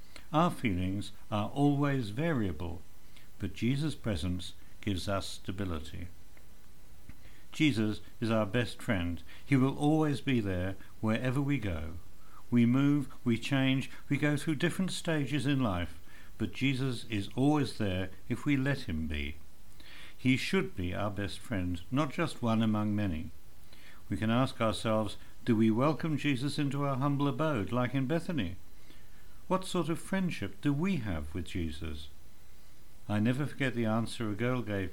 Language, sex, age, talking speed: English, male, 60-79, 150 wpm